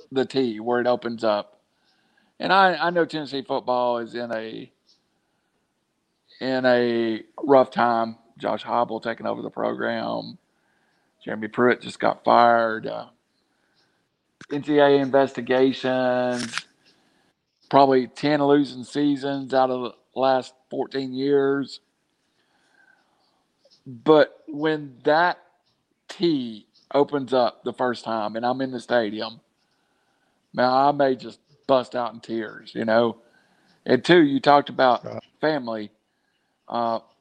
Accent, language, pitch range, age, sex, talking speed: American, English, 115-140 Hz, 50-69, male, 120 wpm